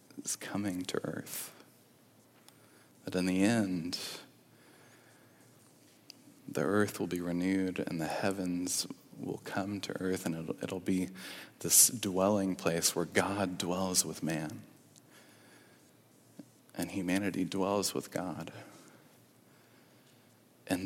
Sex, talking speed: male, 110 wpm